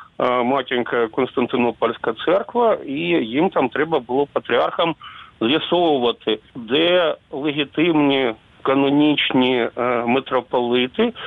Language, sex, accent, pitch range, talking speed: Ukrainian, male, native, 125-155 Hz, 75 wpm